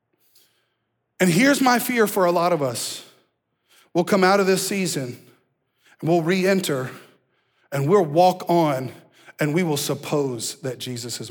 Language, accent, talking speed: English, American, 160 wpm